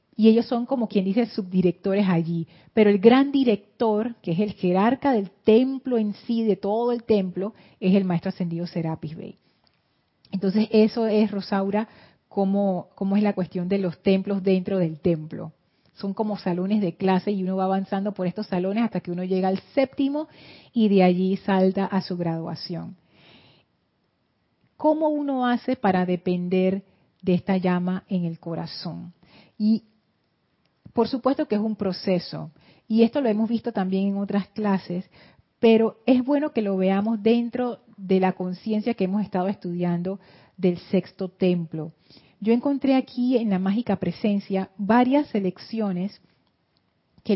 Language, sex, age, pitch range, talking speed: Spanish, female, 40-59, 180-225 Hz, 155 wpm